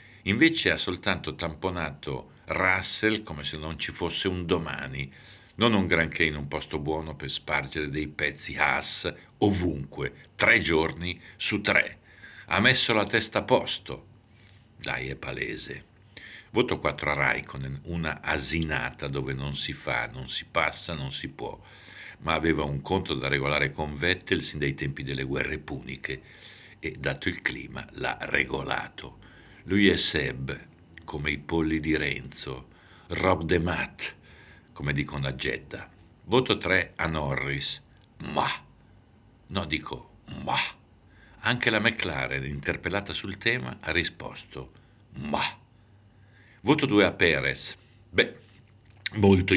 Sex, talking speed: male, 135 wpm